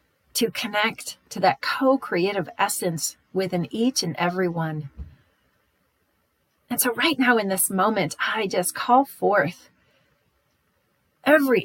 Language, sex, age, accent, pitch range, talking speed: English, female, 40-59, American, 180-230 Hz, 120 wpm